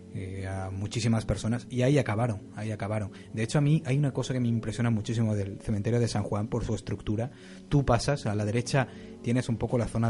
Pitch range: 105-120 Hz